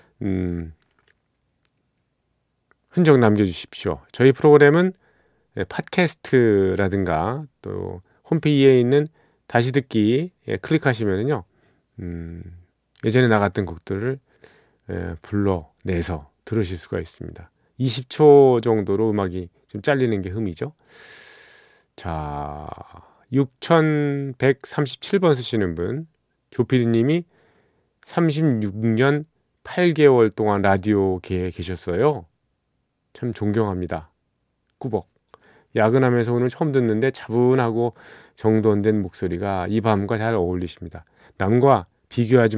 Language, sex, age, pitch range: Korean, male, 40-59, 95-135 Hz